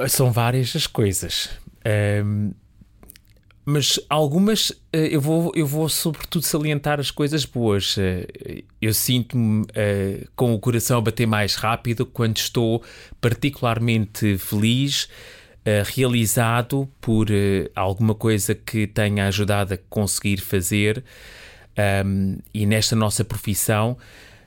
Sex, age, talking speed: male, 30-49, 100 wpm